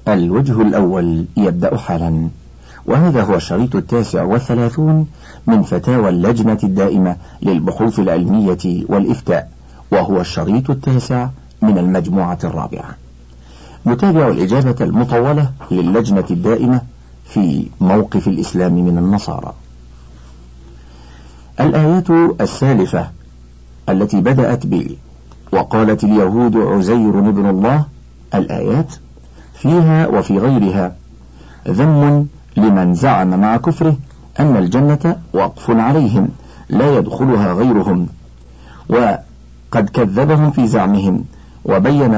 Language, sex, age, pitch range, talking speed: Arabic, male, 50-69, 80-125 Hz, 90 wpm